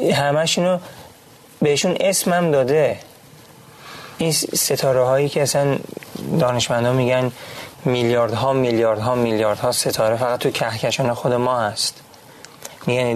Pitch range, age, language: 120-145 Hz, 30-49, Persian